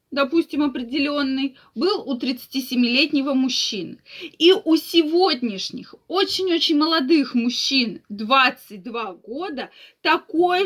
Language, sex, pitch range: Russian, female, 245-320 Hz